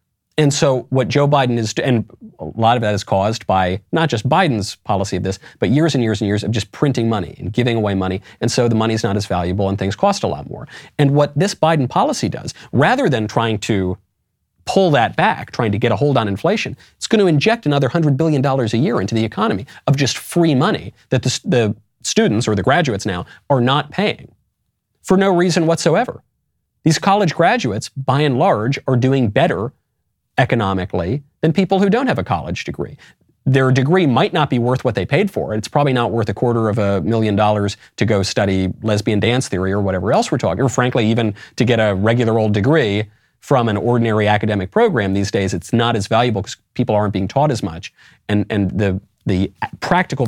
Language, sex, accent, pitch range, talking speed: English, male, American, 105-140 Hz, 215 wpm